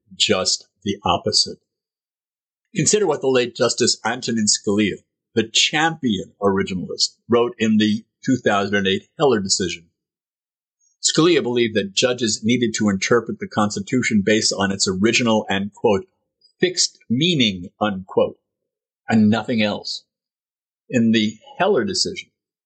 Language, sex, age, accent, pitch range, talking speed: English, male, 50-69, American, 105-130 Hz, 115 wpm